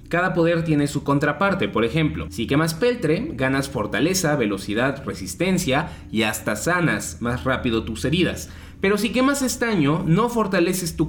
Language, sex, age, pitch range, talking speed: Spanish, male, 20-39, 125-180 Hz, 150 wpm